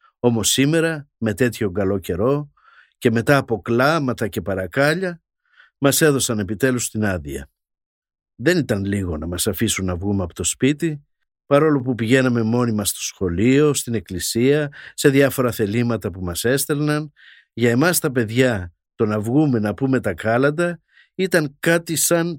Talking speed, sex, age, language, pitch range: 155 wpm, male, 50-69, Greek, 105-150 Hz